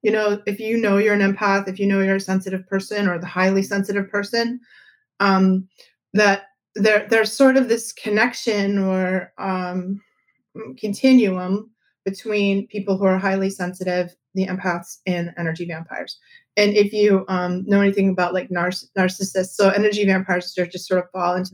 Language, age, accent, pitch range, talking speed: English, 30-49, American, 180-205 Hz, 165 wpm